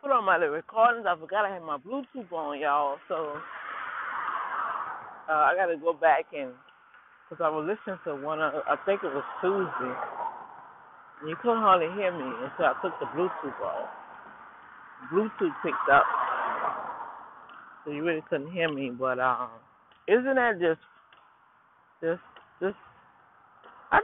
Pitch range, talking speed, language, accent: 160-255 Hz, 155 wpm, English, American